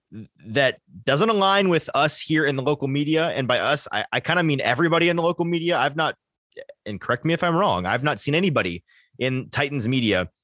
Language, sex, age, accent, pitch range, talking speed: English, male, 20-39, American, 115-160 Hz, 215 wpm